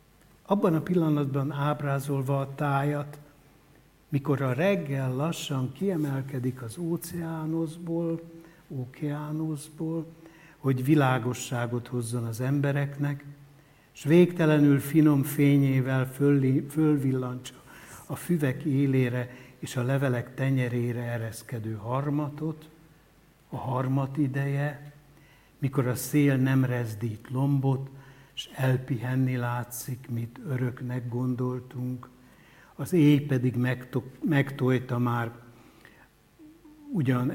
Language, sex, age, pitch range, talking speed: Hungarian, male, 60-79, 125-150 Hz, 85 wpm